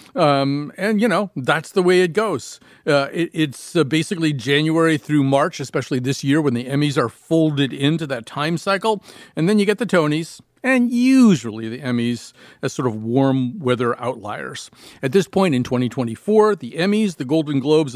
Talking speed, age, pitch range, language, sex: 180 wpm, 40-59, 125-175 Hz, English, male